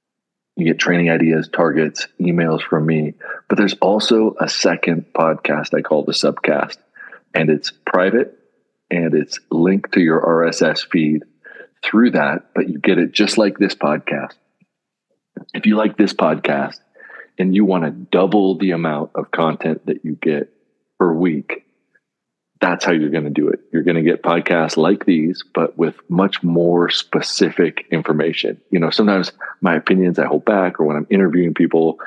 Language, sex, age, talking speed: English, male, 40-59, 170 wpm